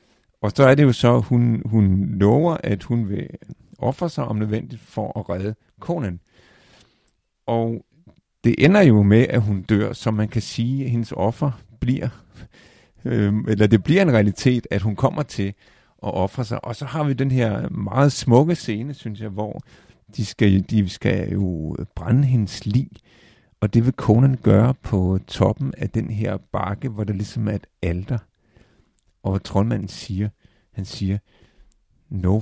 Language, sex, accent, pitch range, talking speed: Danish, male, native, 100-125 Hz, 175 wpm